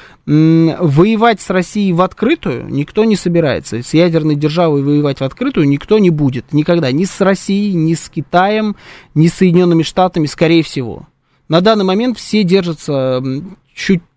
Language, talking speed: Russian, 150 wpm